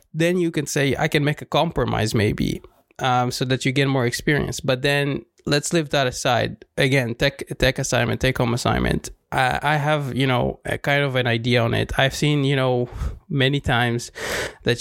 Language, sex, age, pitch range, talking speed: English, male, 20-39, 120-140 Hz, 190 wpm